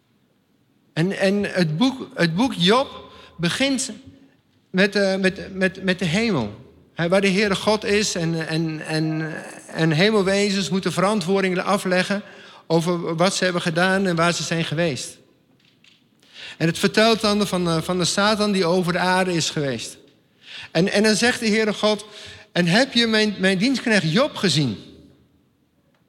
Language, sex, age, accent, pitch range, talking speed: Dutch, male, 50-69, Dutch, 185-235 Hz, 140 wpm